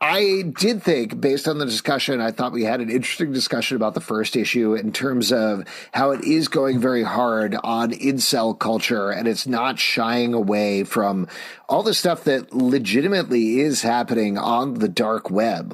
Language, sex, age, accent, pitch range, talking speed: English, male, 30-49, American, 110-145 Hz, 180 wpm